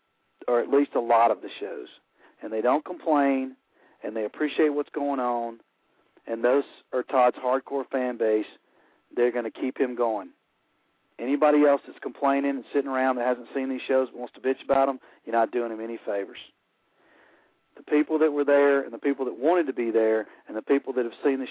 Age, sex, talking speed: 40-59, male, 210 wpm